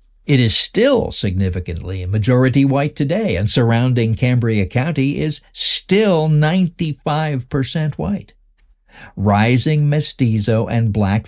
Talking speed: 100 wpm